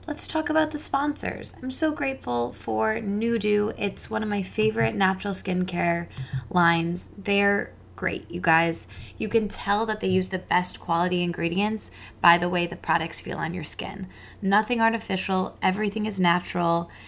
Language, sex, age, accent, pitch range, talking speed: English, female, 20-39, American, 170-225 Hz, 160 wpm